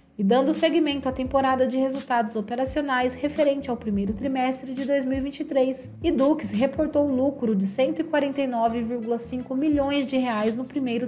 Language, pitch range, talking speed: Portuguese, 225-280 Hz, 140 wpm